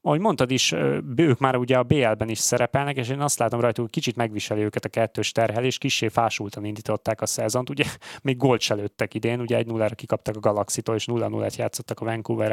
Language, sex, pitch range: Hungarian, male, 115-130 Hz